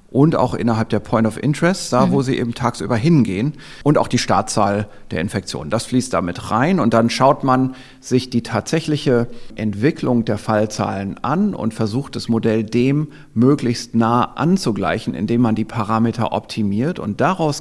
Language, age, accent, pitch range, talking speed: German, 40-59, German, 110-130 Hz, 165 wpm